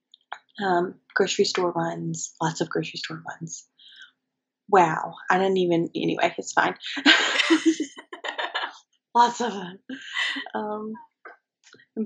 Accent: American